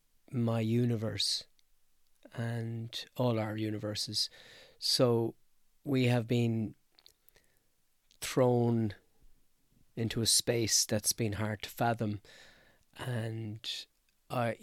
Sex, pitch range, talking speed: male, 110-120 Hz, 85 wpm